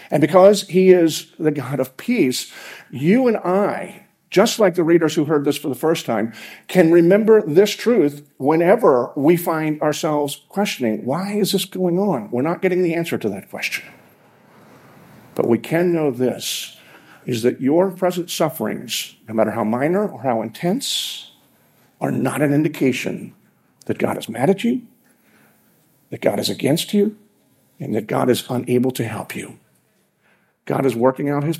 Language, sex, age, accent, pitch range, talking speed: English, male, 50-69, American, 125-185 Hz, 170 wpm